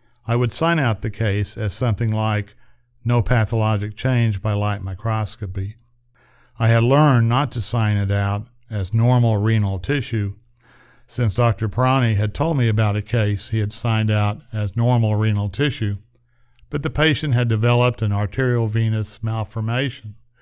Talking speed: 155 wpm